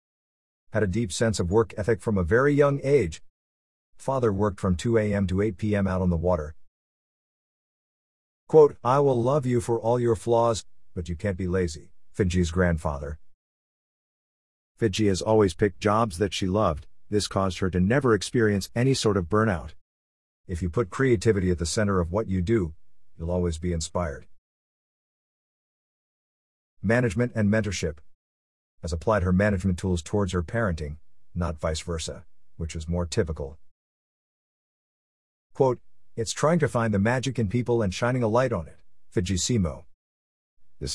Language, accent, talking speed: English, American, 160 wpm